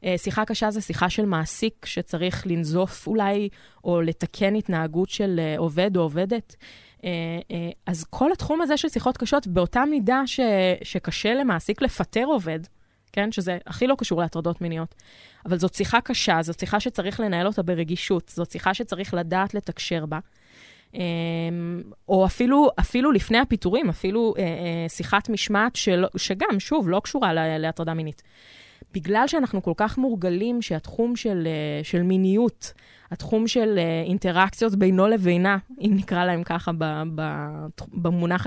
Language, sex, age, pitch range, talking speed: Hebrew, female, 20-39, 170-225 Hz, 135 wpm